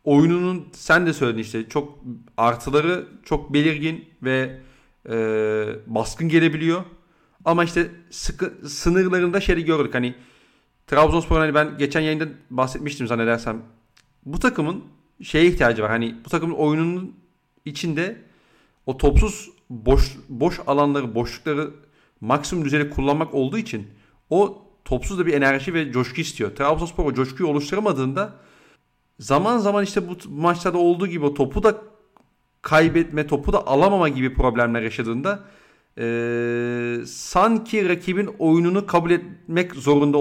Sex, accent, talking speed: male, native, 125 wpm